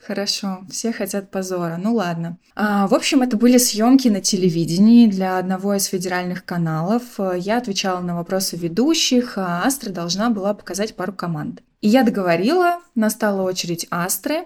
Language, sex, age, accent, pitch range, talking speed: Russian, female, 20-39, native, 185-230 Hz, 150 wpm